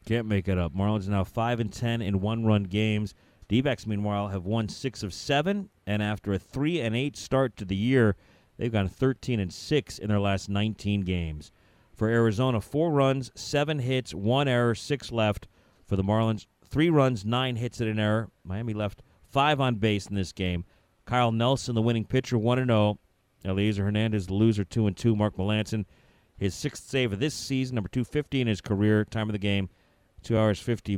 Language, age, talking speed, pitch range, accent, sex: English, 40-59, 205 wpm, 95-120 Hz, American, male